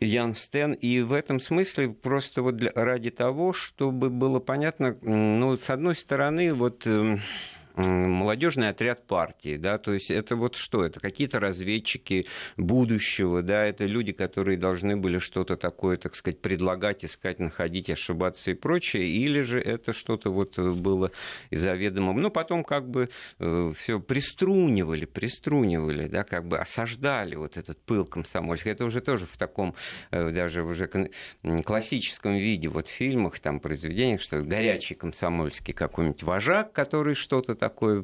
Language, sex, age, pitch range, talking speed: Russian, male, 50-69, 90-125 Hz, 145 wpm